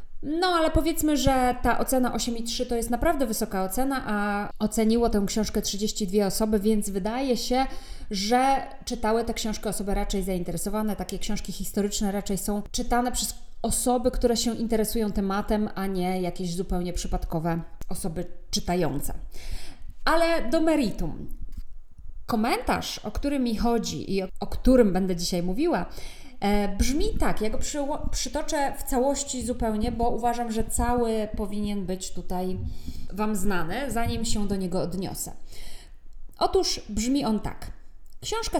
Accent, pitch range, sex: native, 195-250 Hz, female